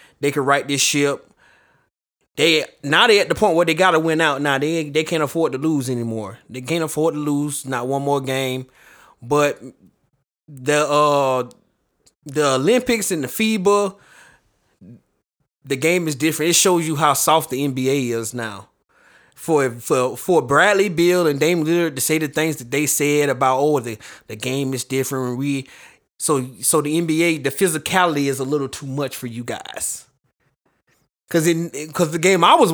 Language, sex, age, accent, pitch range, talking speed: English, male, 20-39, American, 130-160 Hz, 180 wpm